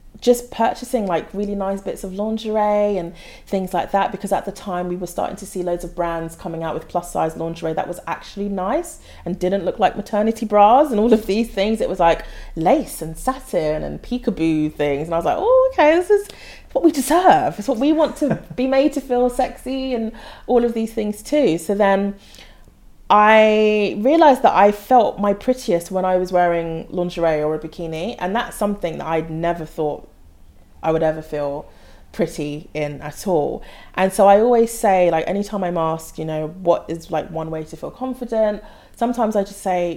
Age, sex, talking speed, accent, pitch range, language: 30-49, female, 205 wpm, British, 160-220 Hz, English